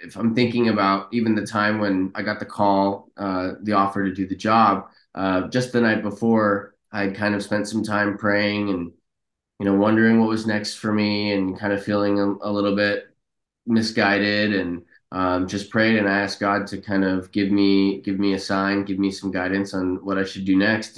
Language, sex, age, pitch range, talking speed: English, male, 20-39, 95-105 Hz, 215 wpm